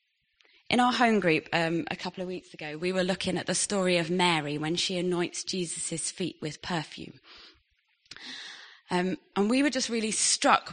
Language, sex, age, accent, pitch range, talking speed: English, female, 20-39, British, 180-240 Hz, 180 wpm